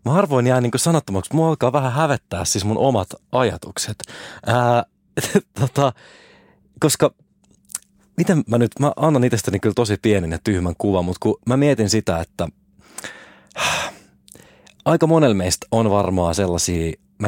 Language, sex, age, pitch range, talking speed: Finnish, male, 30-49, 95-140 Hz, 140 wpm